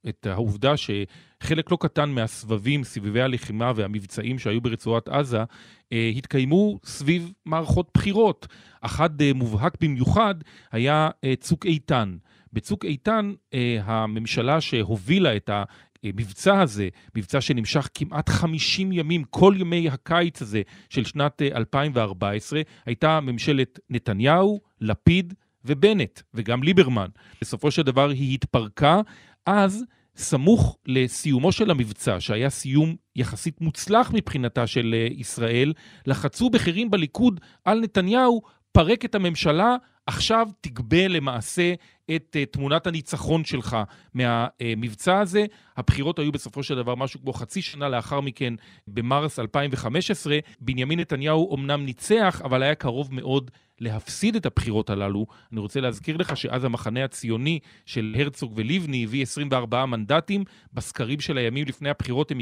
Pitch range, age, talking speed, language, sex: 115-165 Hz, 40-59, 120 wpm, Hebrew, male